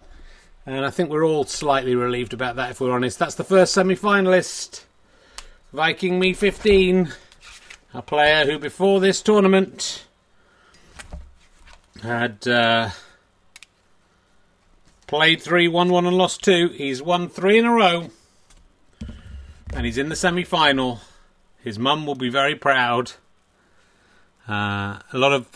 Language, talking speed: English, 135 wpm